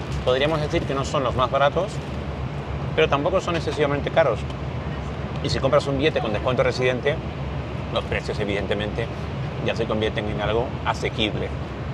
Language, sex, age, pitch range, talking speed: Spanish, male, 30-49, 120-145 Hz, 150 wpm